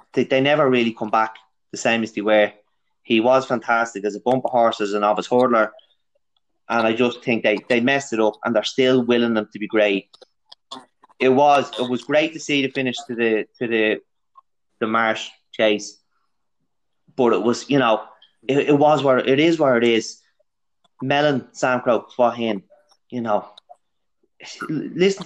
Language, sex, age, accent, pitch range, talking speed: English, male, 20-39, Irish, 110-130 Hz, 185 wpm